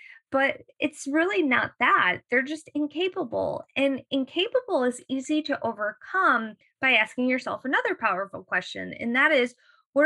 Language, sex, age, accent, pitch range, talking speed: English, female, 20-39, American, 215-300 Hz, 145 wpm